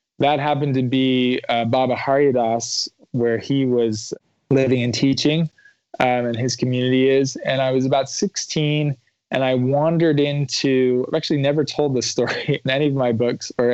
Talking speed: 175 wpm